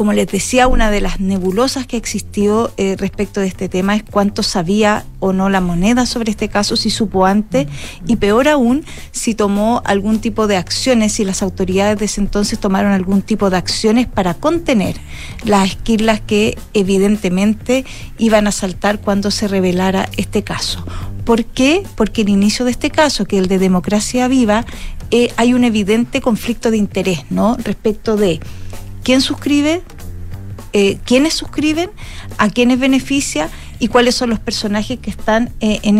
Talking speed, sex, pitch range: 170 wpm, female, 195-235 Hz